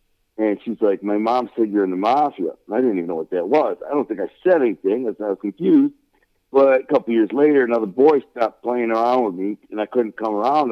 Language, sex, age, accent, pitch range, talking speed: English, male, 60-79, American, 105-130 Hz, 250 wpm